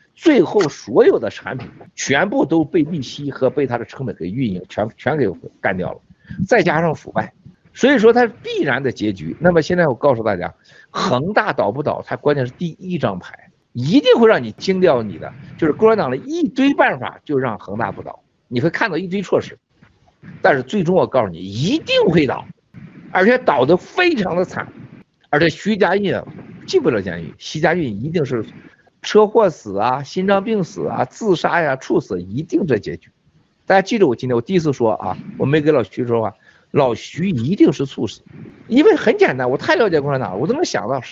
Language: Chinese